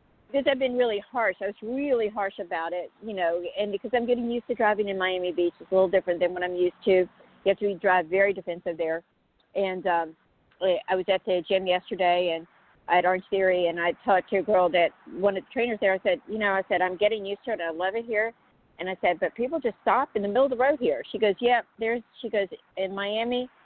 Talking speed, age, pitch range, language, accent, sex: 255 wpm, 50-69, 180-225 Hz, English, American, female